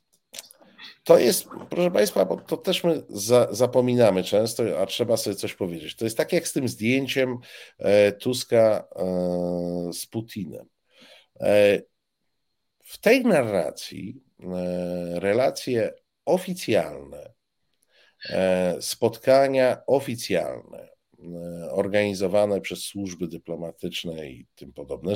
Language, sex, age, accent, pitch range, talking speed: Polish, male, 50-69, native, 90-125 Hz, 95 wpm